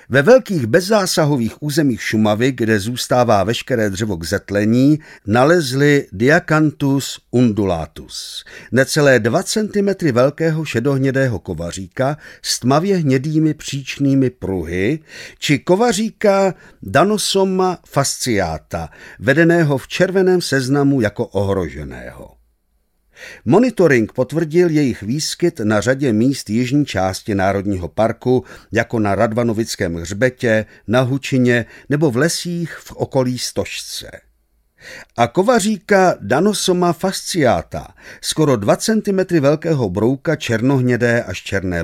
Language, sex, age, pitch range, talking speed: Czech, male, 50-69, 105-160 Hz, 100 wpm